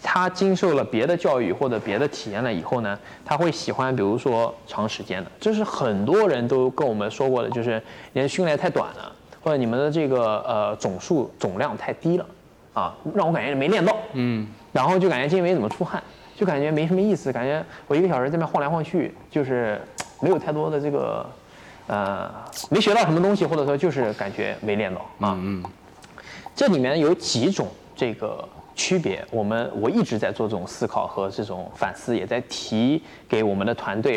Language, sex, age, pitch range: Chinese, male, 20-39, 115-180 Hz